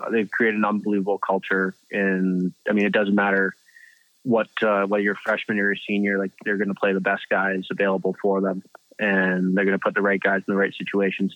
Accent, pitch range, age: American, 95-110 Hz, 20-39